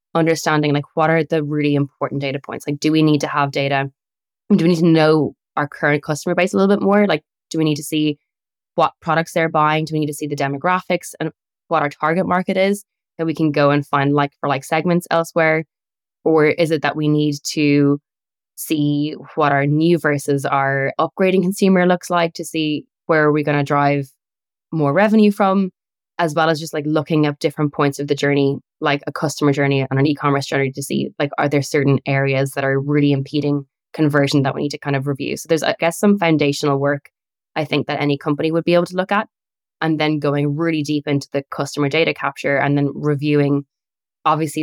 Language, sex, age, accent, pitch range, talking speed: English, female, 10-29, Irish, 140-160 Hz, 220 wpm